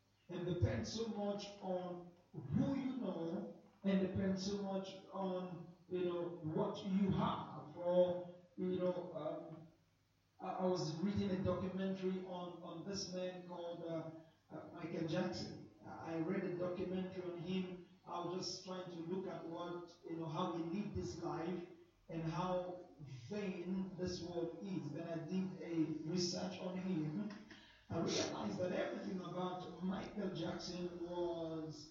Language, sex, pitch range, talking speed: English, male, 170-195 Hz, 150 wpm